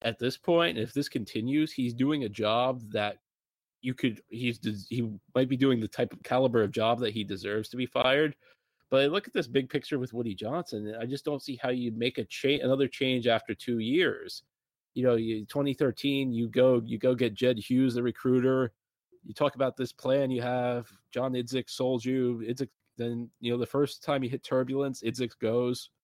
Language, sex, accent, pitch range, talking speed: English, male, American, 115-140 Hz, 205 wpm